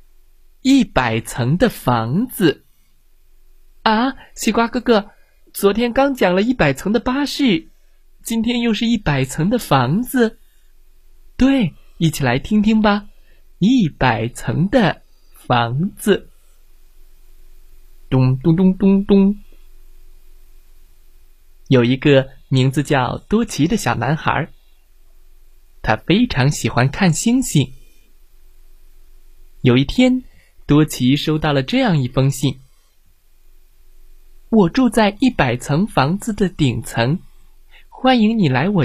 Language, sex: Chinese, male